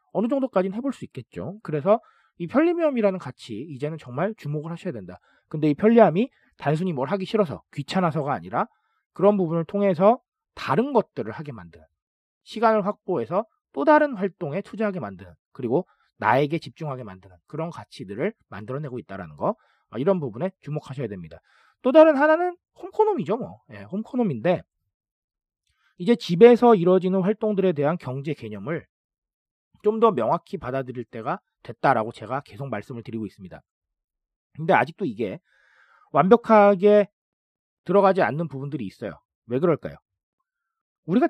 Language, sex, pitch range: Korean, male, 130-210 Hz